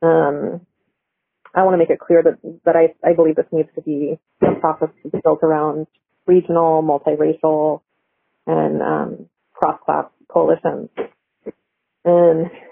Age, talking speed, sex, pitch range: 30-49, 135 wpm, female, 155-170 Hz